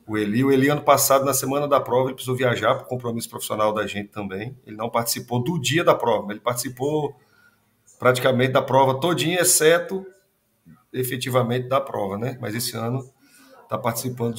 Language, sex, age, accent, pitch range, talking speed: Portuguese, male, 40-59, Brazilian, 115-135 Hz, 180 wpm